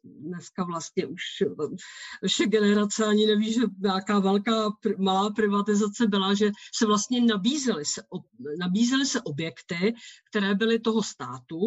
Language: Czech